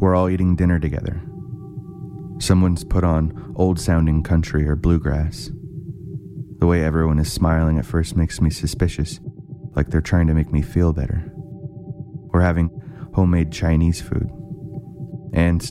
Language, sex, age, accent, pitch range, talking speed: English, male, 30-49, American, 80-90 Hz, 140 wpm